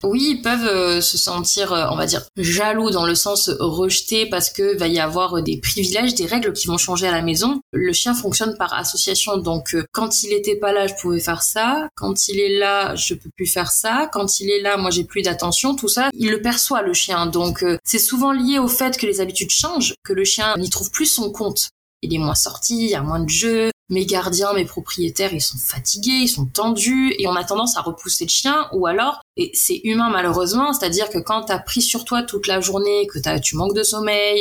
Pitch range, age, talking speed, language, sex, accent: 180-230 Hz, 20-39, 245 wpm, French, female, French